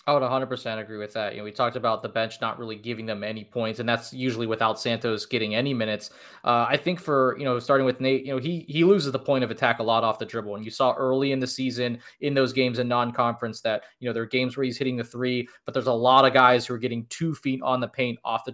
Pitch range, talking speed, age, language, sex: 120-145 Hz, 290 wpm, 20-39, English, male